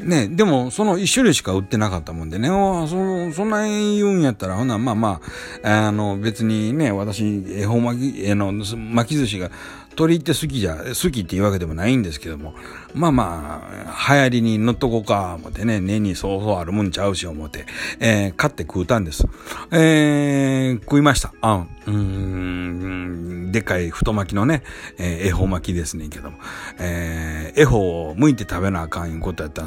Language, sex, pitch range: Japanese, male, 90-135 Hz